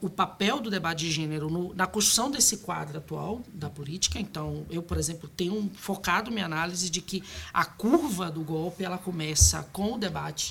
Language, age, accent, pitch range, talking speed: Portuguese, 20-39, Brazilian, 165-225 Hz, 190 wpm